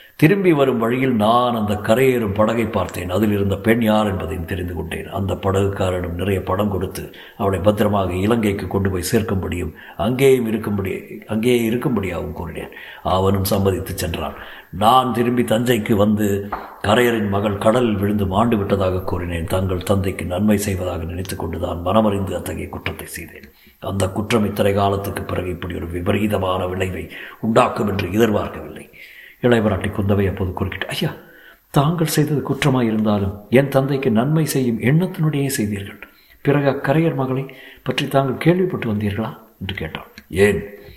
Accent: native